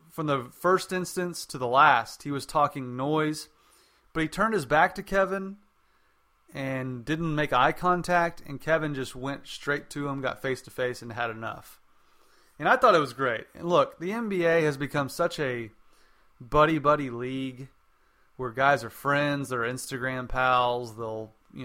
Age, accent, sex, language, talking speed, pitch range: 30-49, American, male, English, 170 wpm, 125-155 Hz